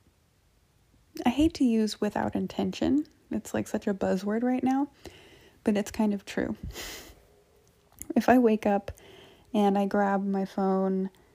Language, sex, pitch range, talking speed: English, female, 195-230 Hz, 130 wpm